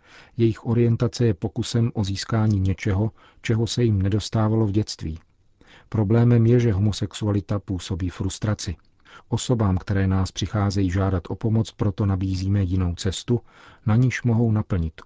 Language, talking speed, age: Czech, 135 wpm, 40-59